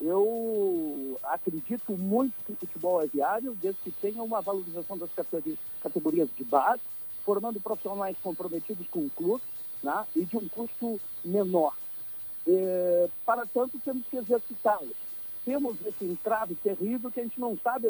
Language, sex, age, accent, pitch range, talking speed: Portuguese, male, 60-79, Brazilian, 190-255 Hz, 150 wpm